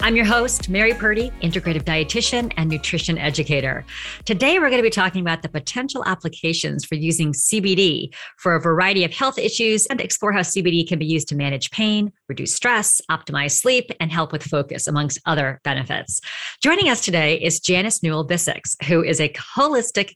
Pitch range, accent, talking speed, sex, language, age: 155-210 Hz, American, 180 wpm, female, English, 40-59